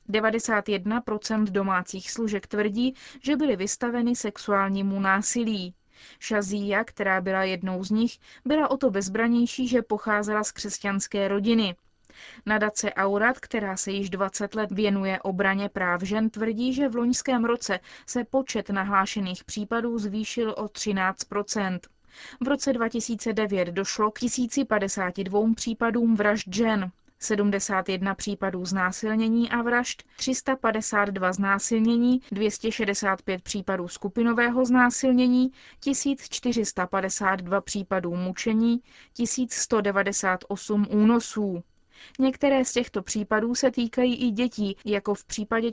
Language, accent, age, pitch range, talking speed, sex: Czech, native, 20-39, 195-235 Hz, 110 wpm, female